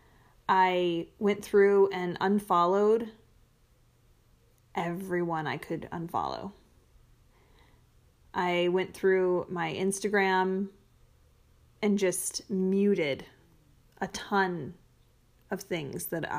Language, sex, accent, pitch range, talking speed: English, female, American, 170-195 Hz, 80 wpm